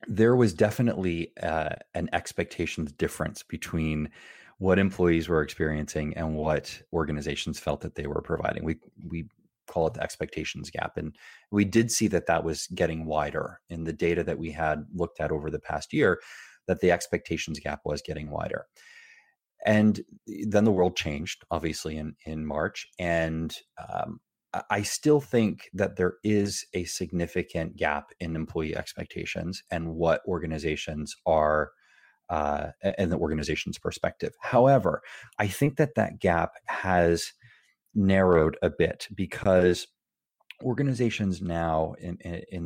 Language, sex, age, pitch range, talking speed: English, male, 30-49, 80-100 Hz, 145 wpm